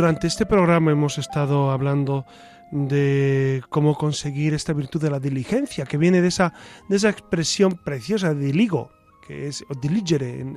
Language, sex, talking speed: Spanish, male, 165 wpm